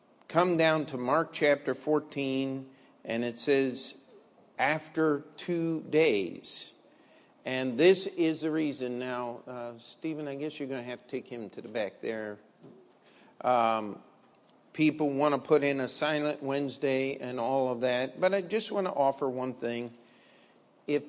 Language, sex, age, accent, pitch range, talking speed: English, male, 50-69, American, 125-155 Hz, 155 wpm